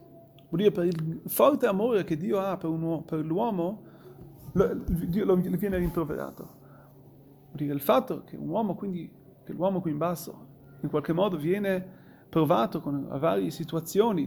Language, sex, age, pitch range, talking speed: Italian, male, 30-49, 140-195 Hz, 175 wpm